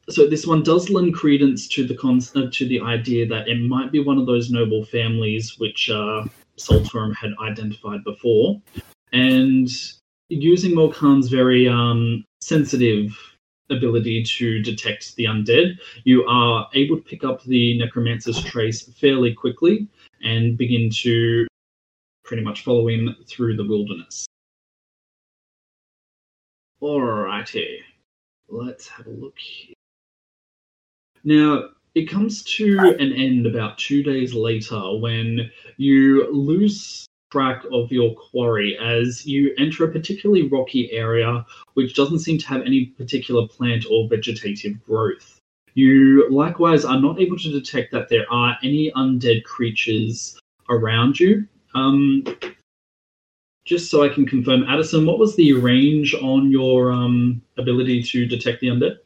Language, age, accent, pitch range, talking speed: English, 20-39, Australian, 115-140 Hz, 135 wpm